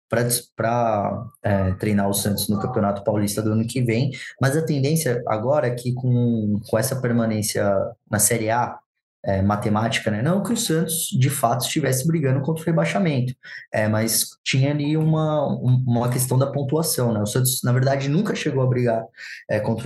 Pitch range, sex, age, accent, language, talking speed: 110-145 Hz, male, 20-39, Brazilian, Portuguese, 165 wpm